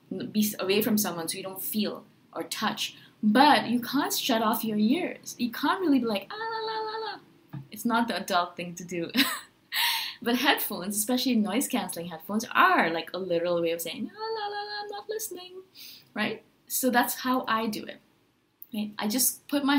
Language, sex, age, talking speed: English, female, 20-39, 195 wpm